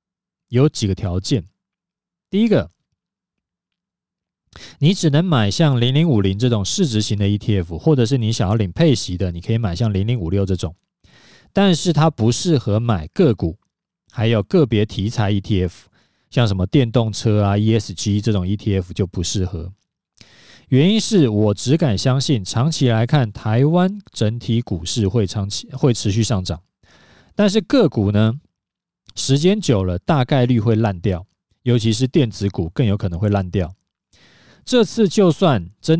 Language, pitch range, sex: Chinese, 100-145 Hz, male